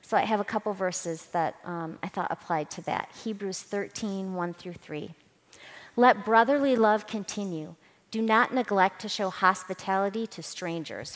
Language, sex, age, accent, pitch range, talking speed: English, female, 40-59, American, 165-210 Hz, 160 wpm